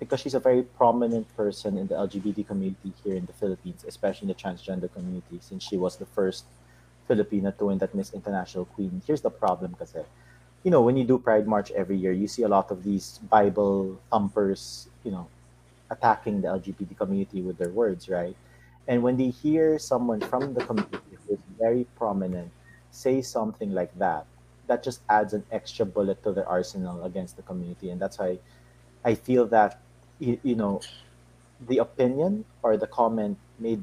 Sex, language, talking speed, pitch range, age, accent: male, English, 185 wpm, 90-120 Hz, 30-49, Filipino